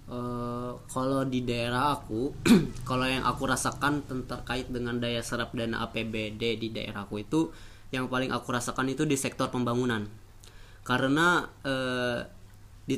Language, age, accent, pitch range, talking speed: Indonesian, 20-39, native, 110-130 Hz, 135 wpm